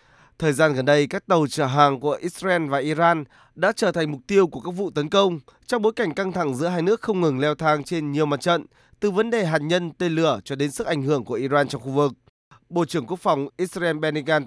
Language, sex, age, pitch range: Vietnamese, male, 20-39, 140-190 Hz